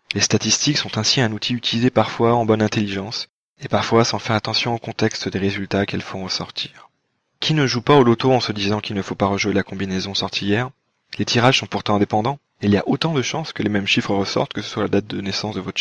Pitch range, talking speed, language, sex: 100-130 Hz, 255 wpm, French, male